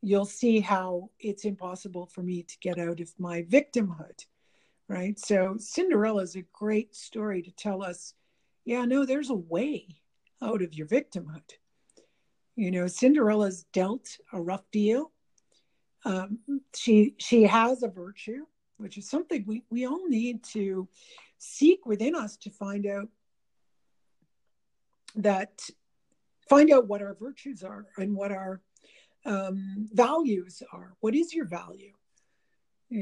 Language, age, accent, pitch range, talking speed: English, 60-79, American, 195-250 Hz, 140 wpm